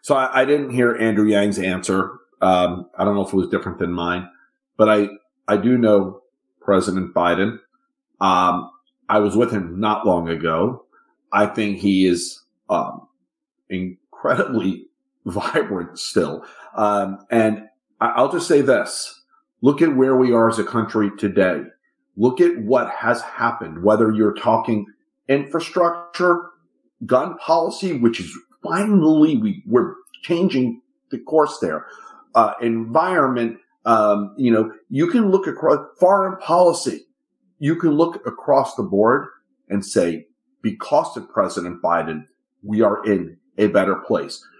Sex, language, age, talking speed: male, English, 40-59, 145 wpm